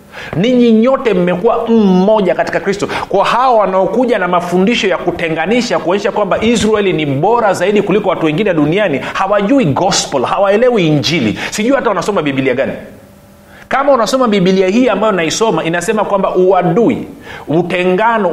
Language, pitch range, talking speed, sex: Swahili, 165-230 Hz, 140 wpm, male